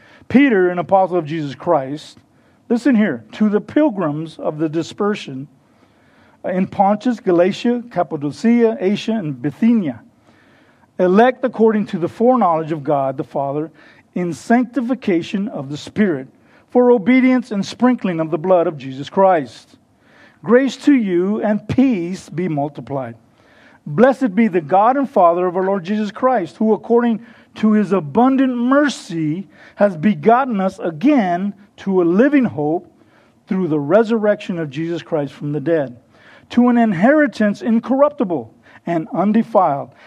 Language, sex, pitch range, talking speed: English, male, 165-240 Hz, 140 wpm